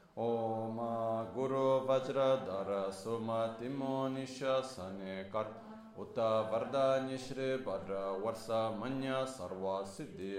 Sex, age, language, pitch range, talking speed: male, 30-49, Italian, 100-130 Hz, 100 wpm